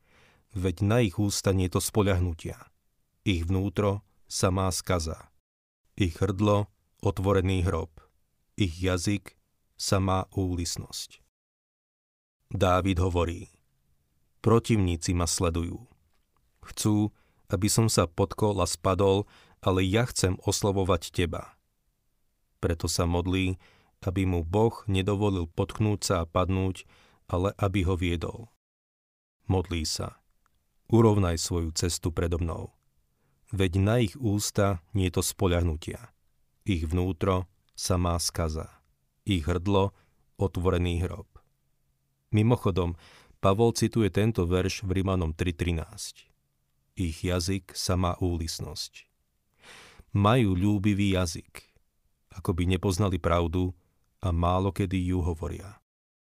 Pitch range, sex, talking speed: 85-100 Hz, male, 105 wpm